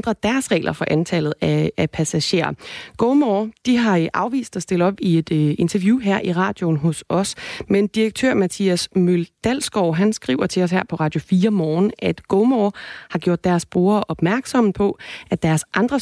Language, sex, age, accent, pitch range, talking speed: Danish, female, 30-49, native, 165-210 Hz, 175 wpm